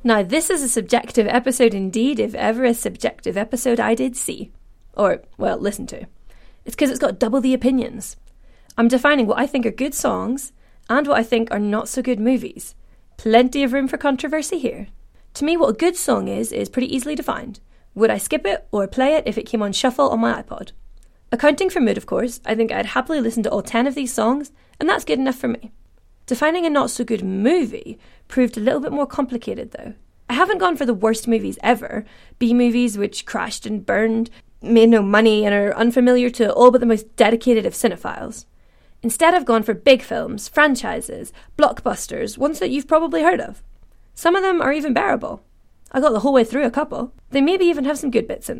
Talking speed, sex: 210 wpm, female